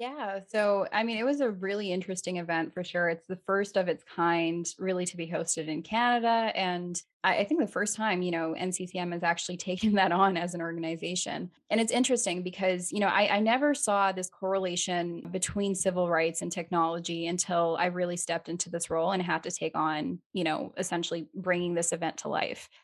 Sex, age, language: female, 10-29, English